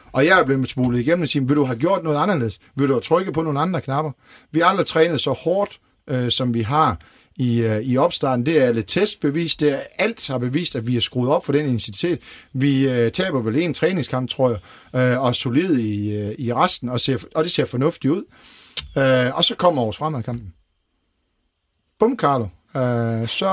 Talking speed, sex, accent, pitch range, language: 215 wpm, male, native, 120-165 Hz, Danish